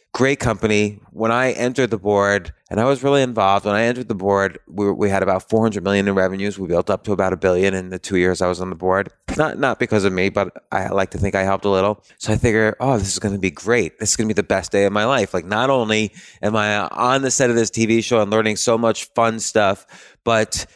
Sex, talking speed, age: male, 275 wpm, 30-49